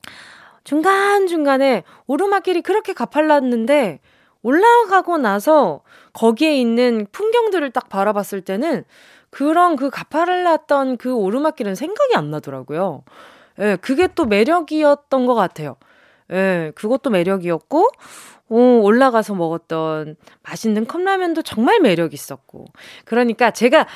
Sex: female